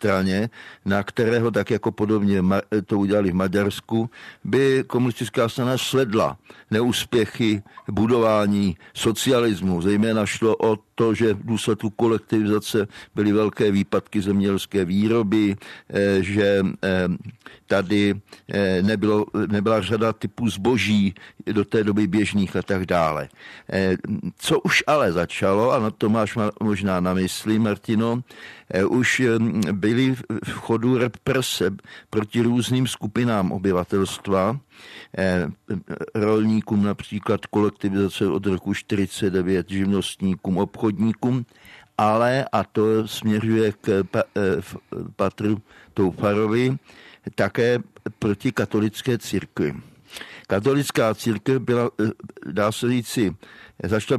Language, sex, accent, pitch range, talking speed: Czech, male, native, 100-115 Hz, 100 wpm